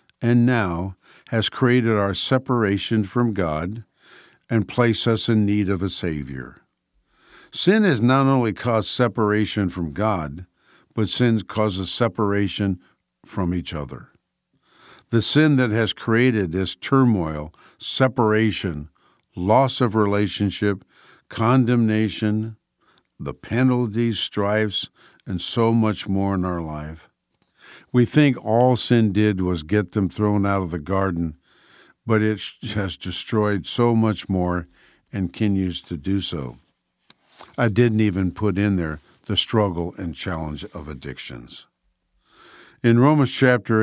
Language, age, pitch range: English, 50-69, 90-115 Hz